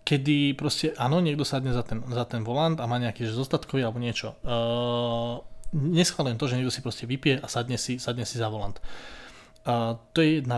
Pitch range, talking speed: 120-145 Hz, 200 wpm